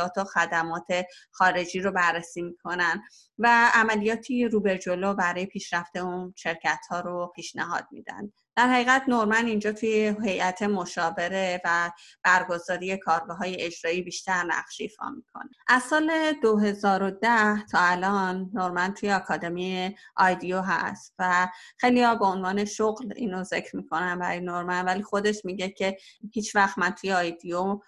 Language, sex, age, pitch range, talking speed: Persian, female, 30-49, 175-210 Hz, 135 wpm